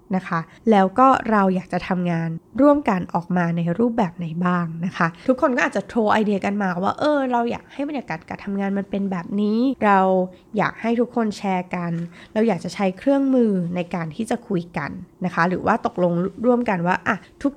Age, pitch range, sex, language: 20-39, 175-225 Hz, female, Thai